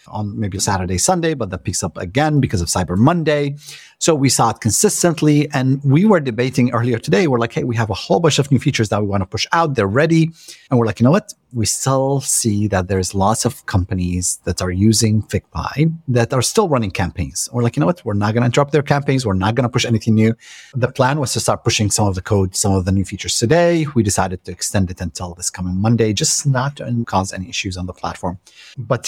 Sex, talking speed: male, 250 wpm